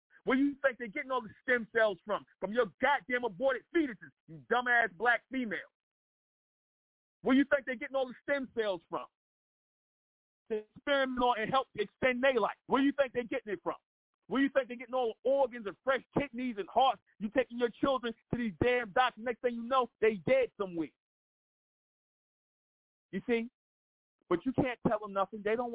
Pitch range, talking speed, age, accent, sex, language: 170-250 Hz, 200 wpm, 40-59, American, male, English